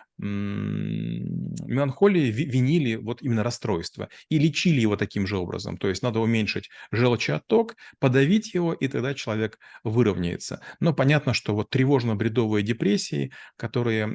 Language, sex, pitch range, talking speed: Russian, male, 110-135 Hz, 125 wpm